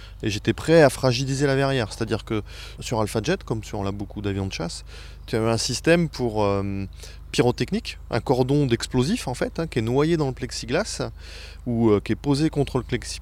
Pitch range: 105-140 Hz